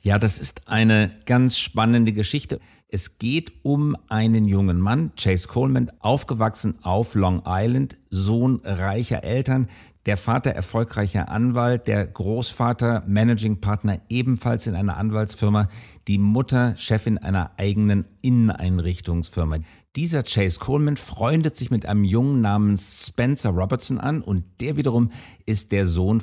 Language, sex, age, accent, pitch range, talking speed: English, male, 50-69, German, 95-120 Hz, 130 wpm